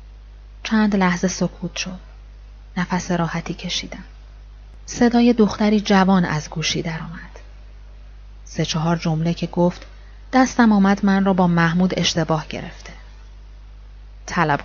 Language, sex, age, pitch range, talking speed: Persian, female, 30-49, 160-195 Hz, 110 wpm